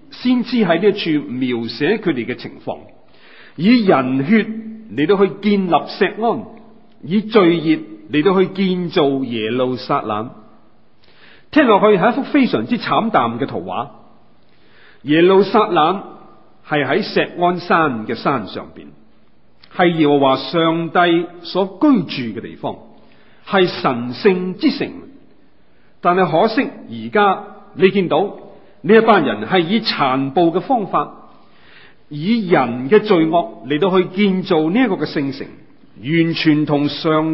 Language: Chinese